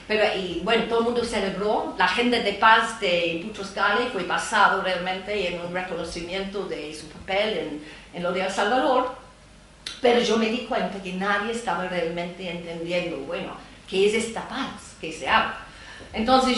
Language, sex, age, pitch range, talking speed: Spanish, female, 40-59, 185-235 Hz, 175 wpm